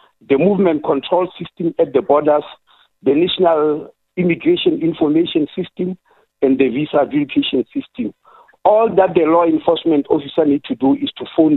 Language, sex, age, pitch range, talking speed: English, male, 50-69, 150-205 Hz, 150 wpm